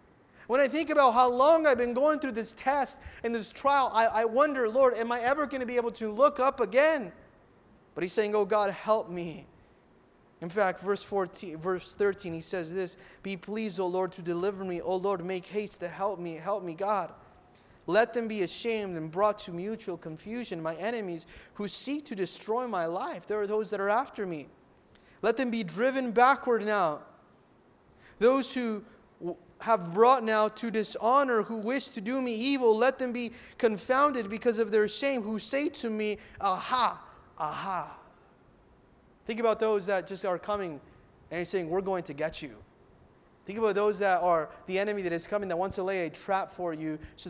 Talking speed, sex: 195 wpm, male